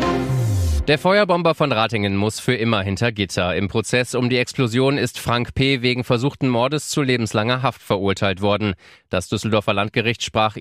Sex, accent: male, German